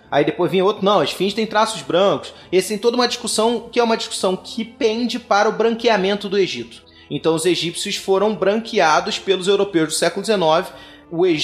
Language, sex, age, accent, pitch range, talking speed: Portuguese, male, 20-39, Brazilian, 155-205 Hz, 195 wpm